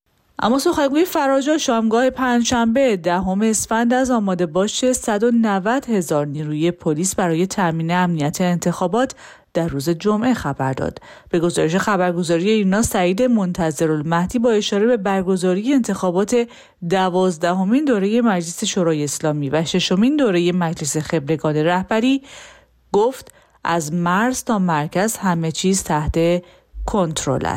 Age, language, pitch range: 30-49, Persian, 170-240 Hz